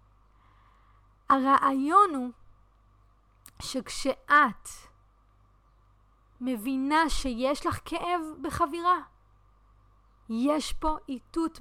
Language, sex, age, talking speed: English, female, 30-49, 55 wpm